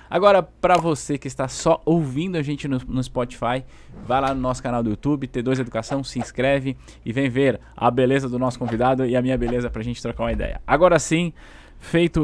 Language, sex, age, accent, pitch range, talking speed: Portuguese, male, 20-39, Brazilian, 115-140 Hz, 210 wpm